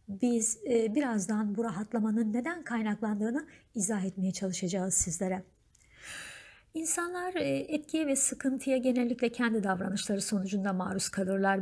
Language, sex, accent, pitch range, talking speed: Turkish, female, native, 195-240 Hz, 105 wpm